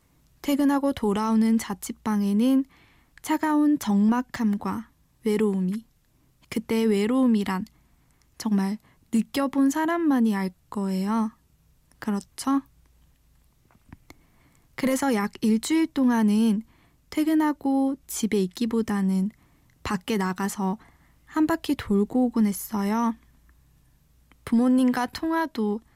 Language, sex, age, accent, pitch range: Korean, female, 20-39, native, 210-275 Hz